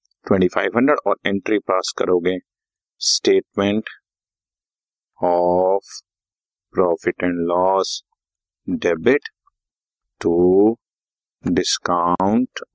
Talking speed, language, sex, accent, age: 60 wpm, Hindi, male, native, 30-49